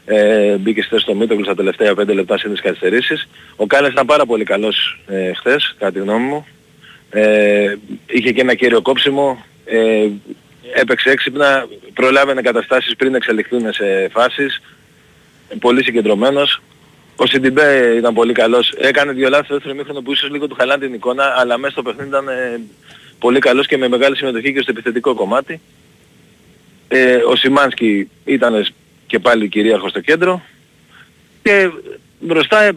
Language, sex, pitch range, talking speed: Greek, male, 120-155 Hz, 150 wpm